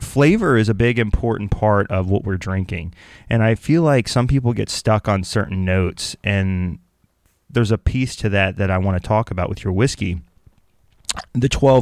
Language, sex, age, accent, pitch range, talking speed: English, male, 30-49, American, 95-115 Hz, 190 wpm